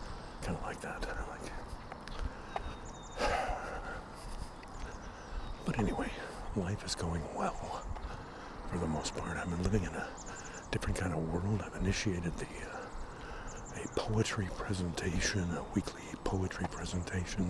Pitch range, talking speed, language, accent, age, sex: 80-95 Hz, 125 wpm, English, American, 60-79, male